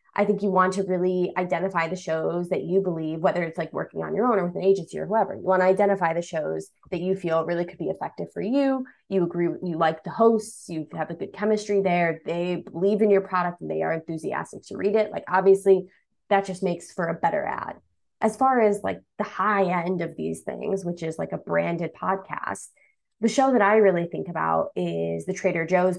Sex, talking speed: female, 230 wpm